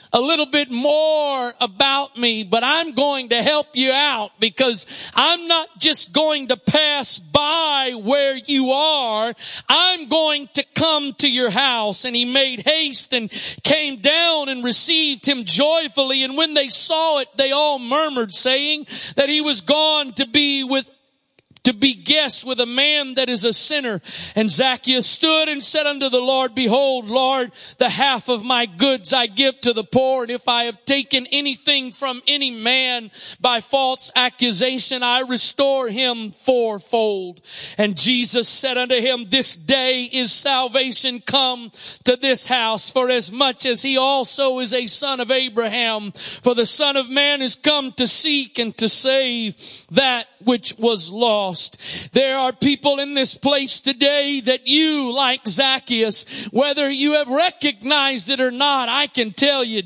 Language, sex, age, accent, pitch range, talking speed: English, male, 40-59, American, 240-280 Hz, 165 wpm